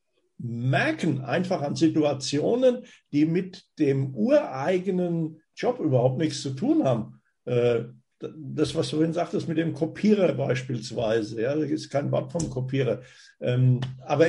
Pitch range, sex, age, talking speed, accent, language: 130-170 Hz, male, 60-79, 135 wpm, German, German